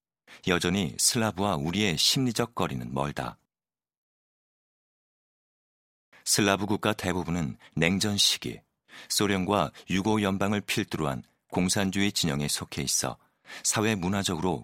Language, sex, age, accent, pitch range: Korean, male, 40-59, native, 80-100 Hz